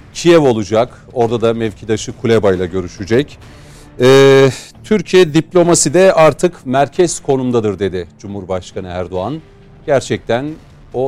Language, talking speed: Turkish, 110 wpm